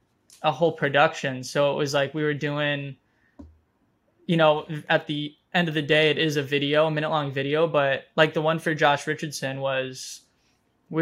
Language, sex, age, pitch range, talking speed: English, male, 20-39, 145-170 Hz, 190 wpm